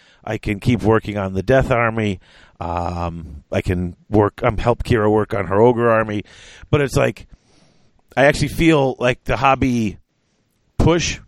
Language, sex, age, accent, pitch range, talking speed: English, male, 40-59, American, 100-135 Hz, 165 wpm